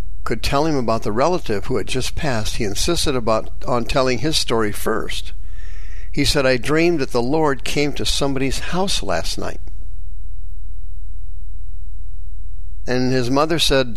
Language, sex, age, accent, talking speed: English, male, 60-79, American, 150 wpm